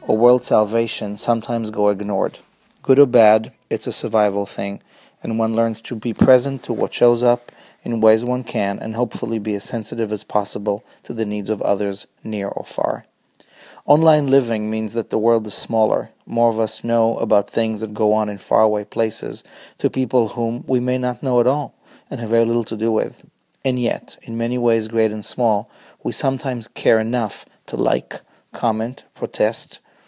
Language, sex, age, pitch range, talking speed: English, male, 30-49, 110-120 Hz, 190 wpm